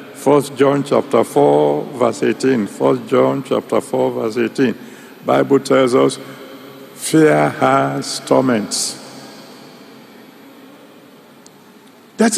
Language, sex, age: English, male, 60-79